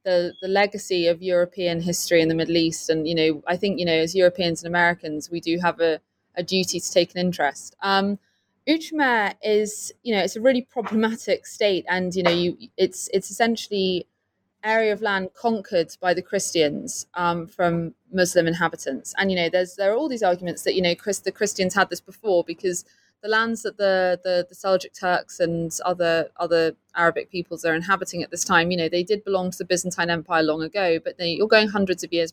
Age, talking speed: 20-39, 210 wpm